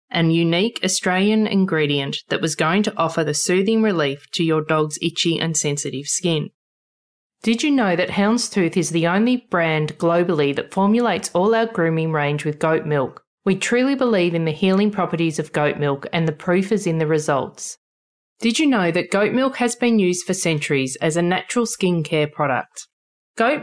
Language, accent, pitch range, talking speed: English, Australian, 155-205 Hz, 185 wpm